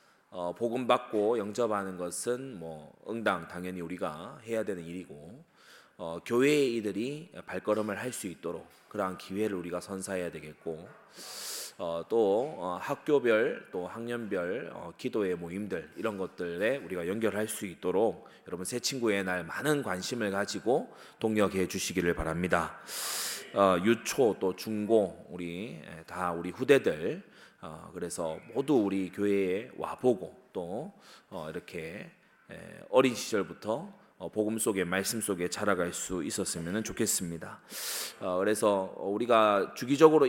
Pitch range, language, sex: 90-115 Hz, Korean, male